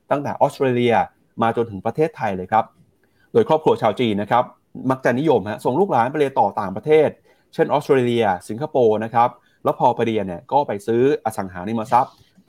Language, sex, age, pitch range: Thai, male, 30-49, 110-150 Hz